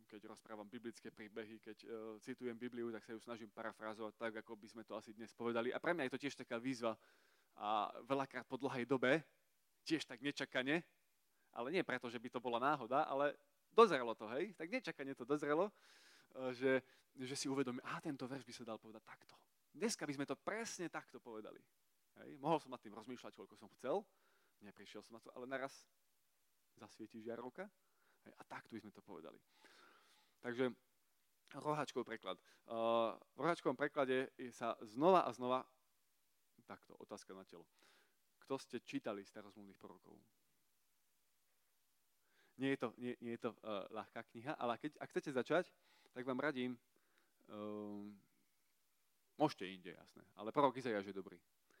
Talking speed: 165 wpm